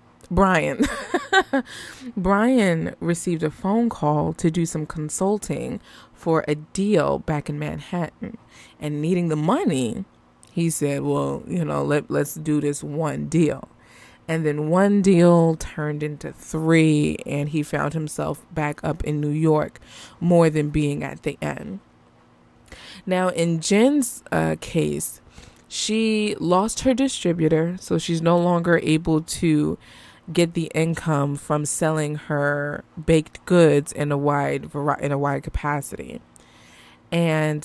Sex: female